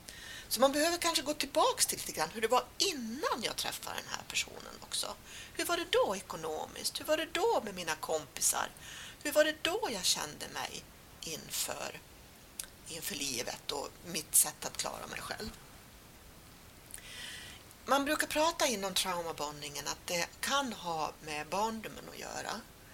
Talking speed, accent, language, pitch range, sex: 160 wpm, native, Swedish, 195-310 Hz, female